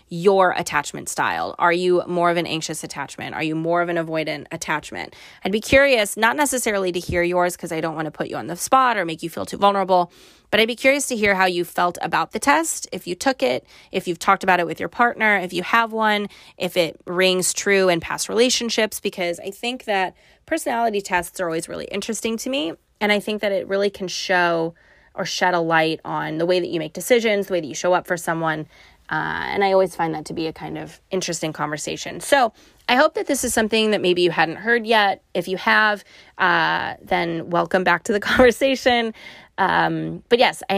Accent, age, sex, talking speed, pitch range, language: American, 20-39, female, 230 wpm, 165-215 Hz, English